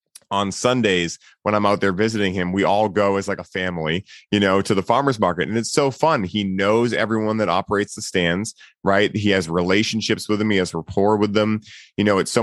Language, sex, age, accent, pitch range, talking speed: English, male, 30-49, American, 95-115 Hz, 225 wpm